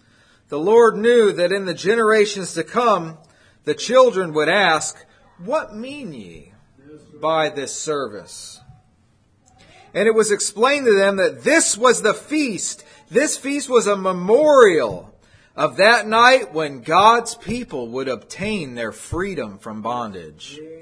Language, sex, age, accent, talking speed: English, male, 40-59, American, 135 wpm